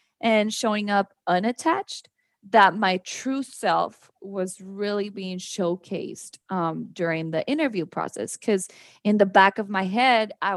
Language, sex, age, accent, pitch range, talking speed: English, female, 20-39, American, 185-230 Hz, 140 wpm